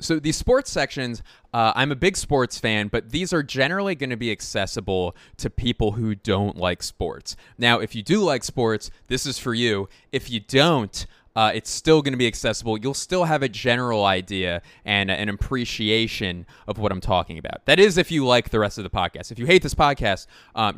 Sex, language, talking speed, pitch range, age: male, English, 215 wpm, 105-145 Hz, 20-39